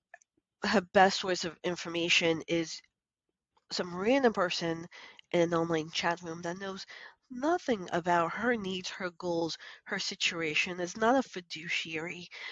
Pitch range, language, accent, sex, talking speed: 165-210 Hz, English, American, female, 135 wpm